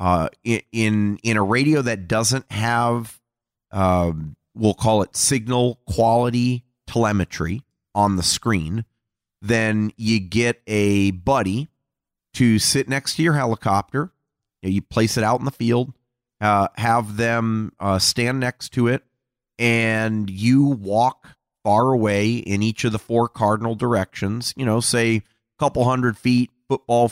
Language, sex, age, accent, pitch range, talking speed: English, male, 30-49, American, 100-120 Hz, 145 wpm